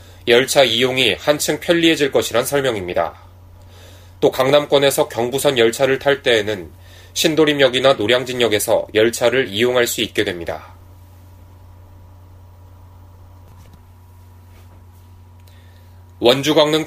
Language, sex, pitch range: Korean, male, 90-145 Hz